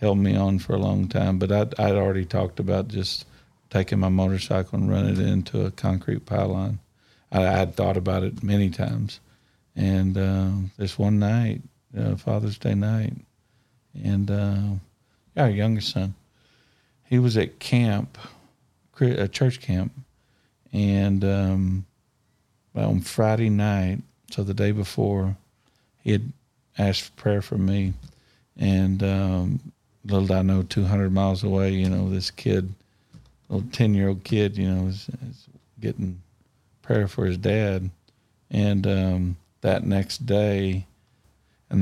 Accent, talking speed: American, 145 wpm